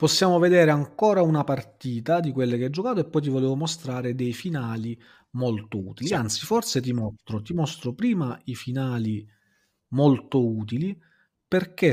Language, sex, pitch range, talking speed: Italian, male, 125-175 Hz, 155 wpm